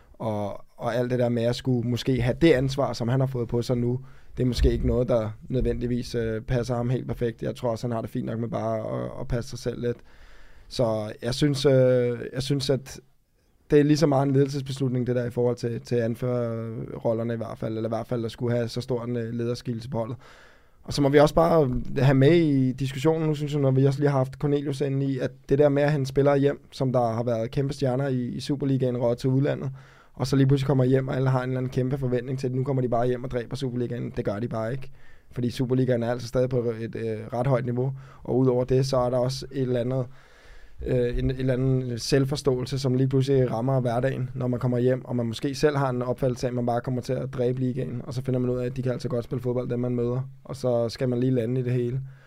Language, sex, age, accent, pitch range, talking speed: Danish, male, 20-39, native, 120-135 Hz, 265 wpm